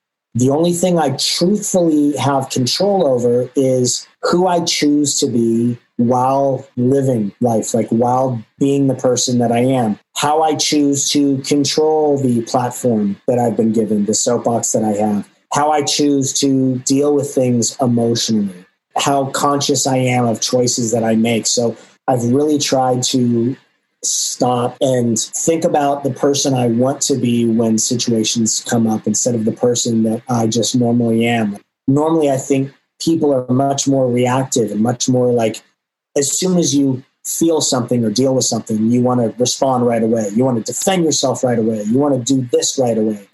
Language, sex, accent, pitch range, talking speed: English, male, American, 115-140 Hz, 175 wpm